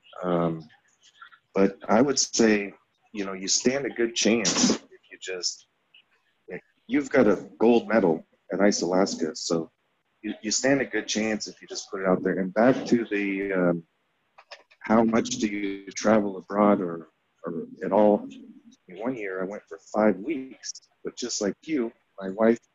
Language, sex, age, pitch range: English, male, 30-49, 90-115 Hz